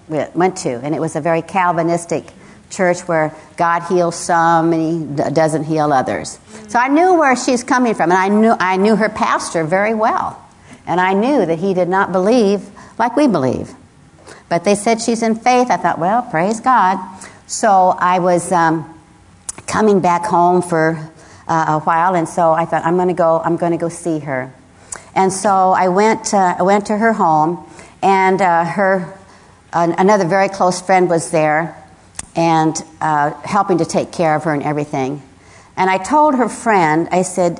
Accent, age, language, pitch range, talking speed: American, 60-79, English, 155-195 Hz, 190 wpm